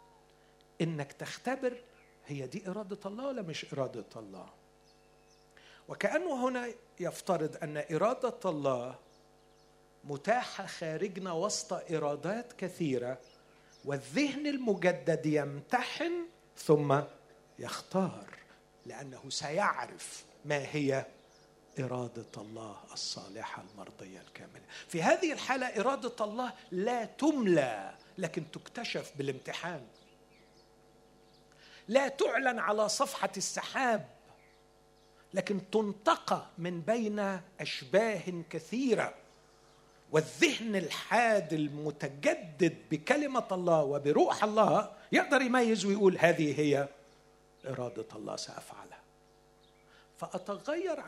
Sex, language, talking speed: male, Arabic, 85 wpm